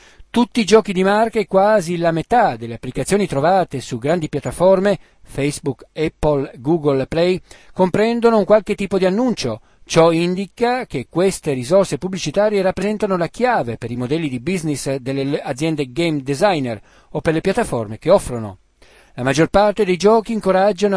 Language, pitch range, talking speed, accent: Italian, 140-200 Hz, 155 wpm, native